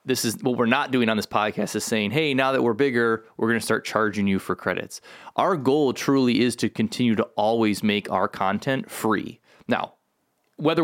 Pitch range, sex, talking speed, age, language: 100-120 Hz, male, 210 wpm, 20-39, English